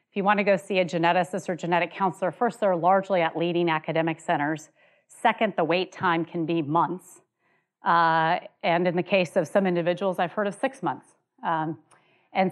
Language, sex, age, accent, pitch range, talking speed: English, female, 30-49, American, 160-195 Hz, 185 wpm